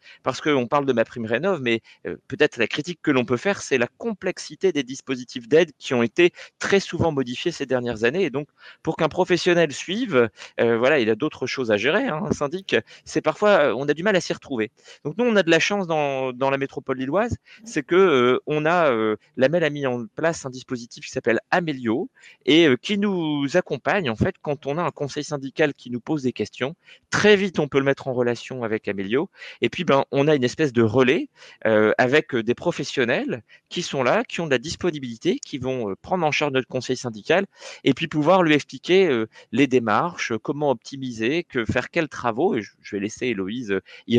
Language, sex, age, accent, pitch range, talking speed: French, male, 30-49, French, 130-175 Hz, 215 wpm